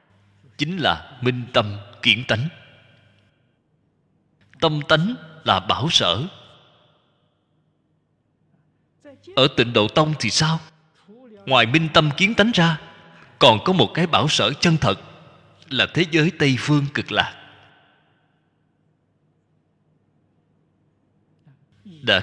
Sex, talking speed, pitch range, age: male, 105 wpm, 120-165 Hz, 20-39